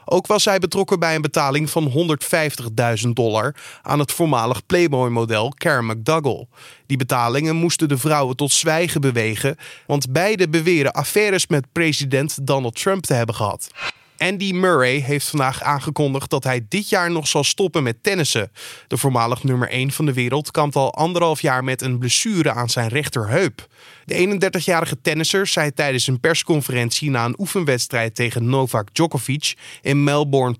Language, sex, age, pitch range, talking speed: Dutch, male, 20-39, 130-170 Hz, 160 wpm